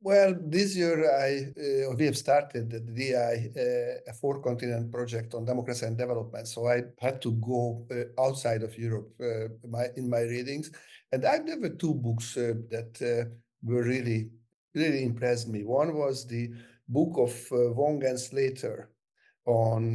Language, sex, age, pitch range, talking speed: English, male, 50-69, 120-140 Hz, 155 wpm